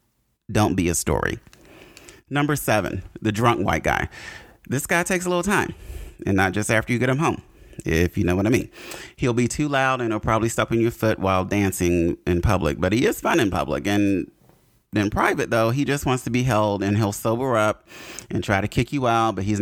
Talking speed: 225 wpm